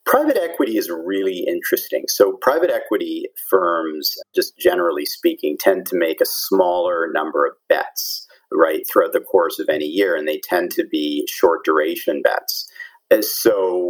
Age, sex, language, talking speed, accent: 40-59, male, English, 155 wpm, American